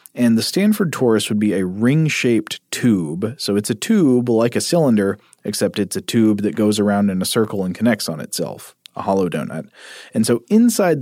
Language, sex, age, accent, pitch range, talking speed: English, male, 30-49, American, 100-120 Hz, 195 wpm